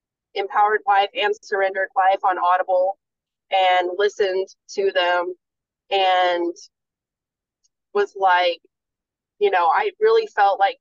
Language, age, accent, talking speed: English, 30-49, American, 110 wpm